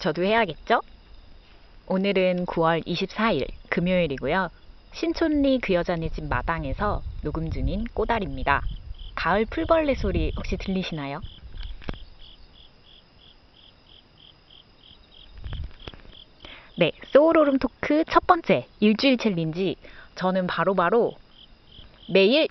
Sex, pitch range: female, 160-230 Hz